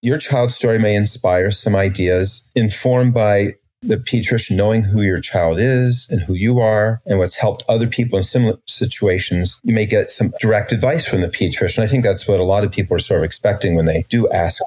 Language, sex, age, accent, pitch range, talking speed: English, male, 30-49, American, 100-125 Hz, 215 wpm